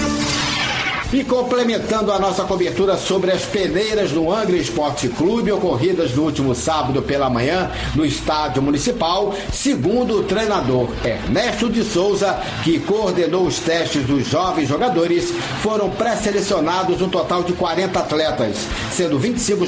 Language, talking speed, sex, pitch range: Portuguese, 130 wpm, male, 150-195 Hz